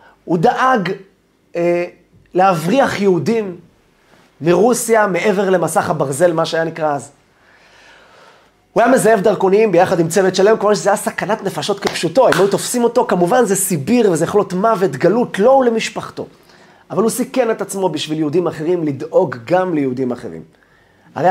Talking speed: 150 wpm